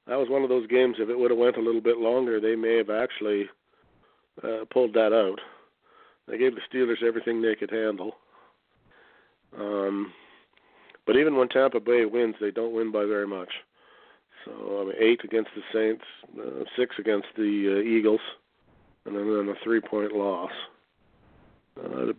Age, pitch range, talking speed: 40-59, 105-130 Hz, 170 wpm